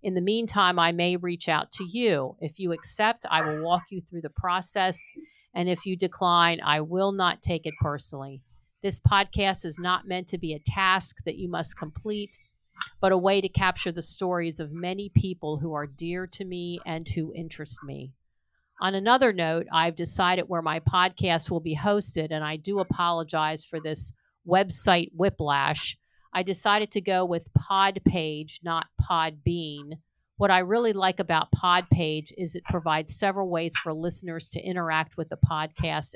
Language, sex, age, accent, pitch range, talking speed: English, female, 50-69, American, 160-190 Hz, 180 wpm